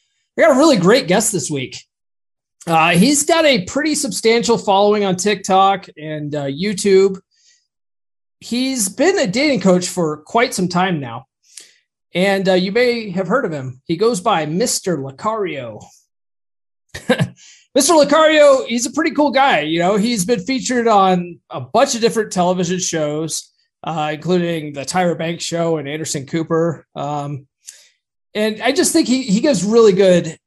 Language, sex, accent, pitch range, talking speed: English, male, American, 155-220 Hz, 160 wpm